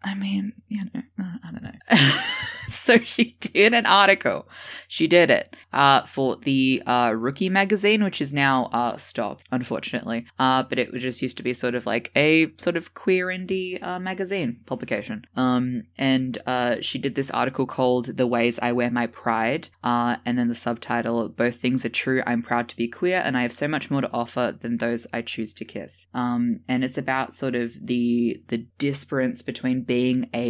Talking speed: 200 wpm